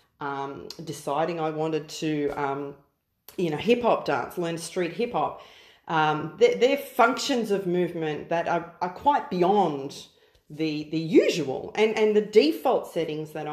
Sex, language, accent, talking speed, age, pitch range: female, English, Australian, 150 wpm, 40-59, 155-210 Hz